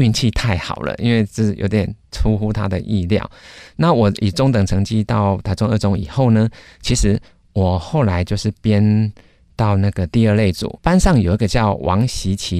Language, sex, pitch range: Chinese, male, 90-110 Hz